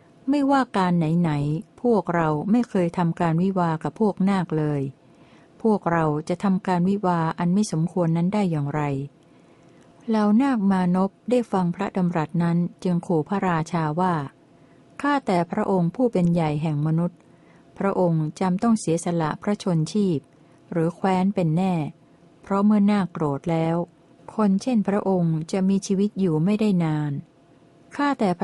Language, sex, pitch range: Thai, female, 165-200 Hz